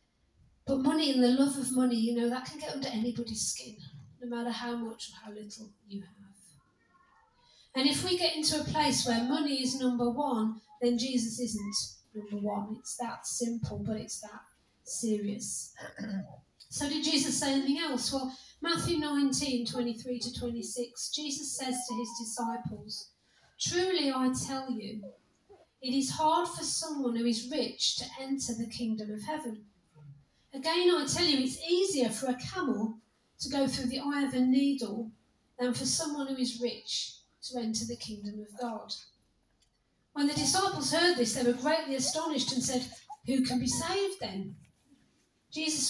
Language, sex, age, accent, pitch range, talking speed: English, female, 40-59, British, 225-280 Hz, 170 wpm